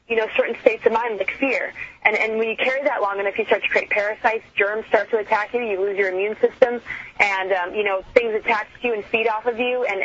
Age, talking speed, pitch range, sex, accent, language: 20-39, 265 wpm, 195-235 Hz, female, American, English